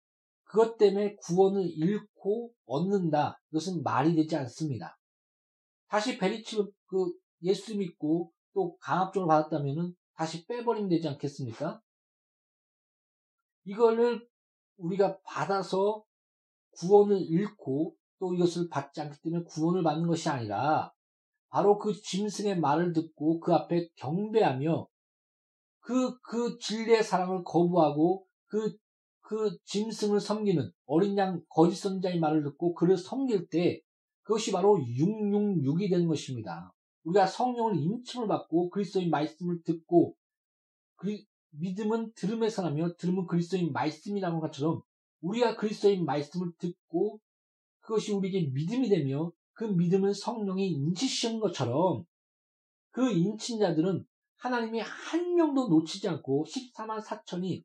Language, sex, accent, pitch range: Korean, male, native, 165-215 Hz